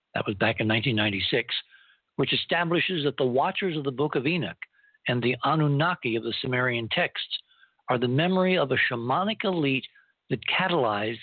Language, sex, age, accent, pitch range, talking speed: English, male, 60-79, American, 125-180 Hz, 165 wpm